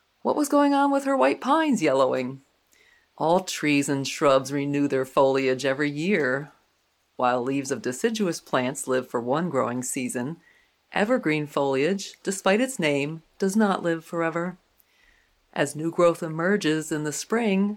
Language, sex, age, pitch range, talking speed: English, female, 40-59, 145-205 Hz, 150 wpm